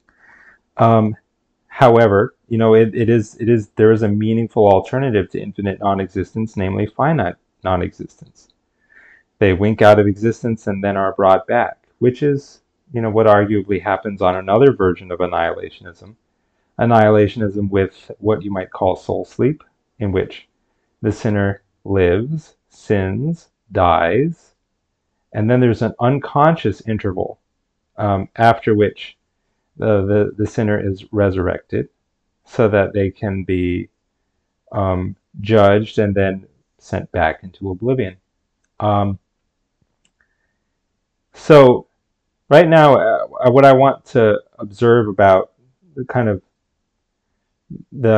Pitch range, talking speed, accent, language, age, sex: 100-115 Hz, 125 wpm, American, English, 30-49, male